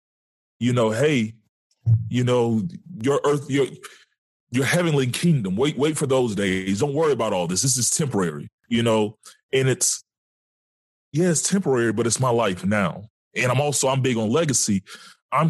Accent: American